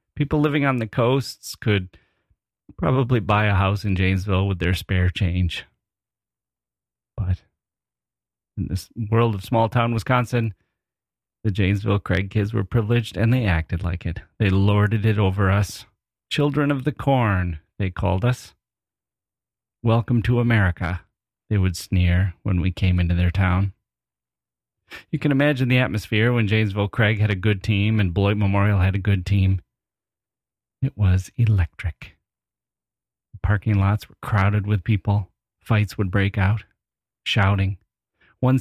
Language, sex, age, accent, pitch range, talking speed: English, male, 30-49, American, 95-110 Hz, 145 wpm